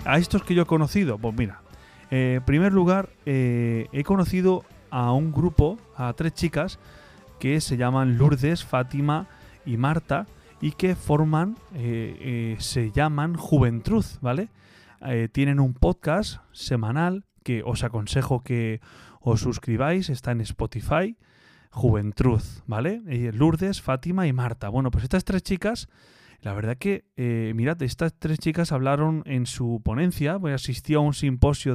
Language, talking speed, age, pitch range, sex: Spanish, 150 wpm, 30-49, 115-150 Hz, male